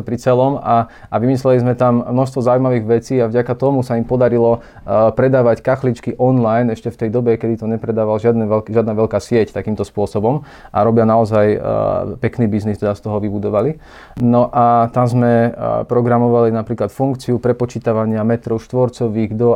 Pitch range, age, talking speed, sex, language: 110-120 Hz, 20-39, 165 wpm, male, Slovak